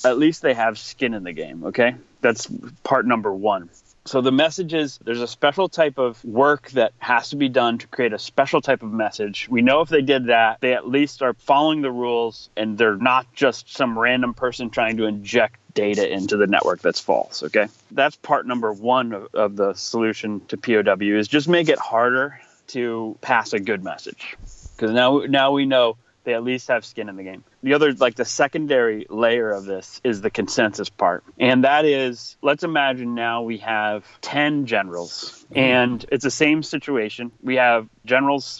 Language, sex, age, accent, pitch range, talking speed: English, male, 30-49, American, 115-140 Hz, 195 wpm